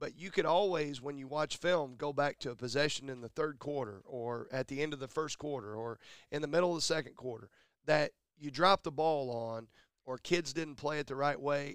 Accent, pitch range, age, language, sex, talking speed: American, 125-150 Hz, 40-59, English, male, 240 wpm